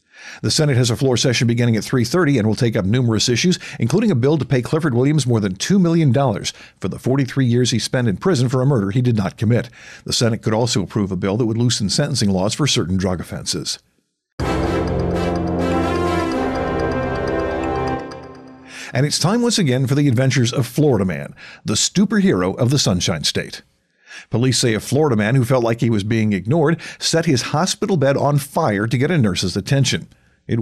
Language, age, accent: English, 50-69, American